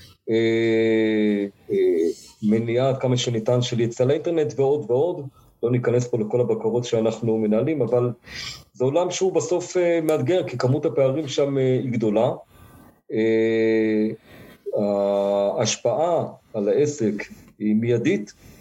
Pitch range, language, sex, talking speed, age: 110-135 Hz, Hebrew, male, 125 wpm, 50-69